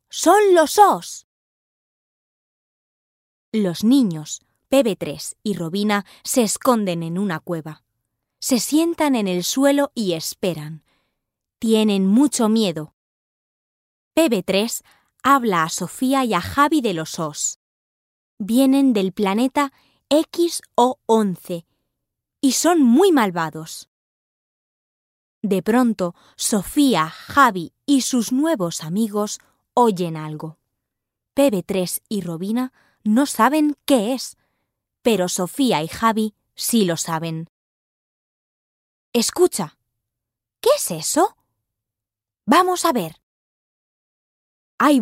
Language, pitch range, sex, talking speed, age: Slovak, 180-270 Hz, female, 95 wpm, 20-39